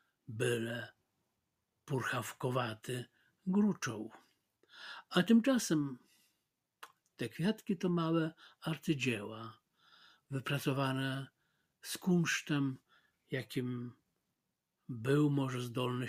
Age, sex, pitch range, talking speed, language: 60-79, male, 125-165 Hz, 65 wpm, Polish